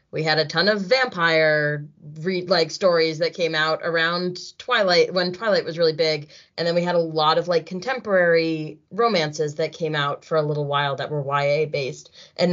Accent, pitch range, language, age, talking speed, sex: American, 155-195 Hz, English, 20-39, 200 wpm, female